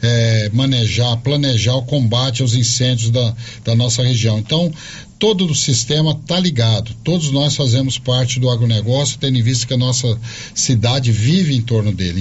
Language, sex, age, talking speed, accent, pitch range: Portuguese, male, 50-69, 160 wpm, Brazilian, 115-135 Hz